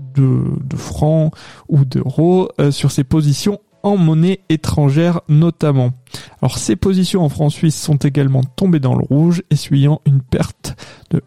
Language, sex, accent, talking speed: French, male, French, 155 wpm